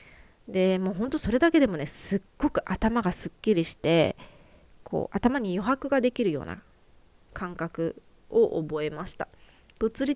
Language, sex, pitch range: Japanese, female, 165-240 Hz